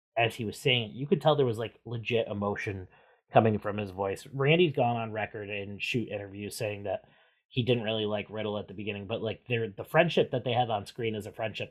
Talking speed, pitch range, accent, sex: 230 wpm, 110-140 Hz, American, male